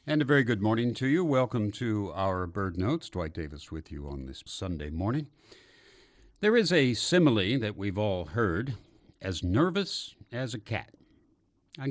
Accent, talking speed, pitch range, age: American, 170 wpm, 90-135 Hz, 60-79